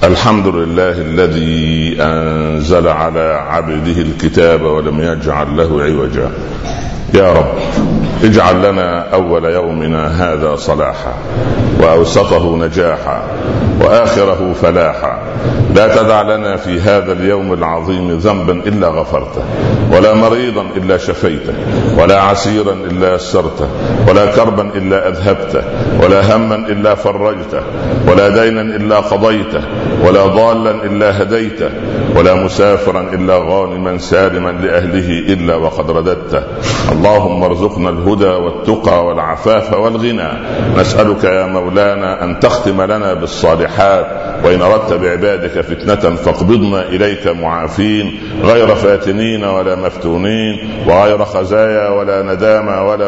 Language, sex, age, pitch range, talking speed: Arabic, male, 60-79, 85-105 Hz, 105 wpm